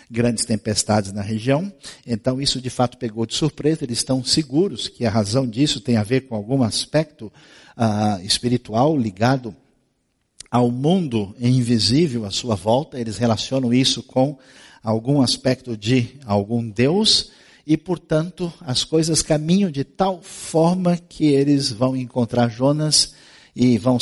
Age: 50-69